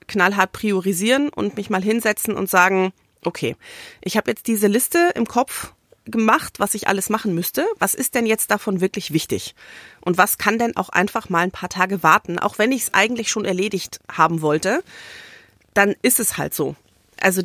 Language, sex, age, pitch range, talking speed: German, female, 30-49, 170-210 Hz, 190 wpm